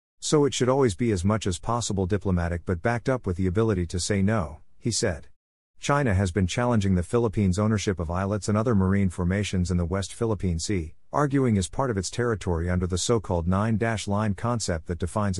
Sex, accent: male, American